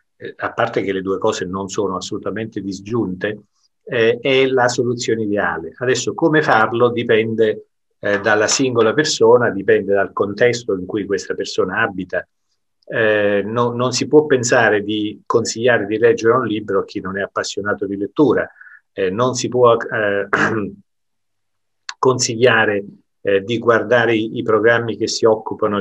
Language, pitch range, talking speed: Italian, 100-130 Hz, 145 wpm